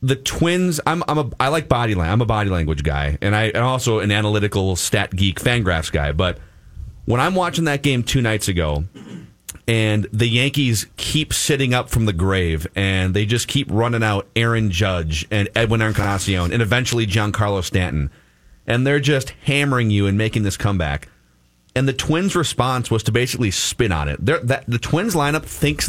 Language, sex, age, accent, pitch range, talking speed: English, male, 30-49, American, 95-130 Hz, 190 wpm